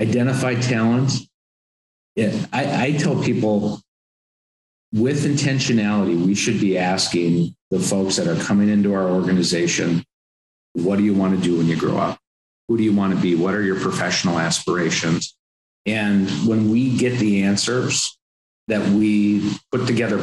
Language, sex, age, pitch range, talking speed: English, male, 50-69, 90-110 Hz, 150 wpm